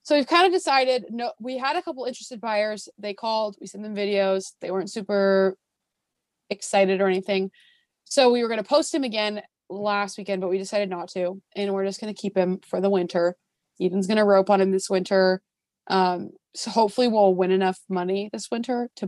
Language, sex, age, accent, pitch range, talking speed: English, female, 20-39, American, 190-225 Hz, 210 wpm